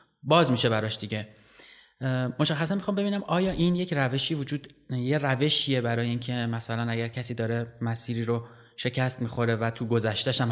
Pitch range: 115-135 Hz